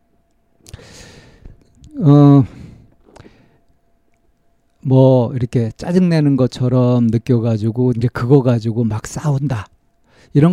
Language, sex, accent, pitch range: Korean, male, native, 115-140 Hz